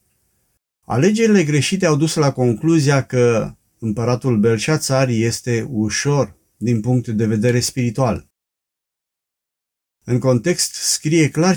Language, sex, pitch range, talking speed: Romanian, male, 115-150 Hz, 105 wpm